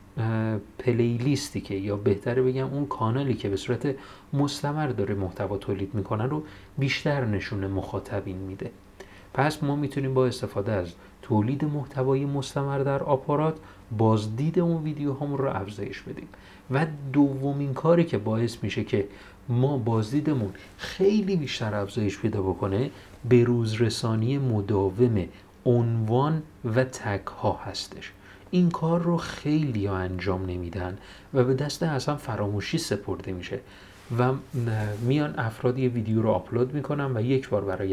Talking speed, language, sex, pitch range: 135 wpm, Persian, male, 100-140 Hz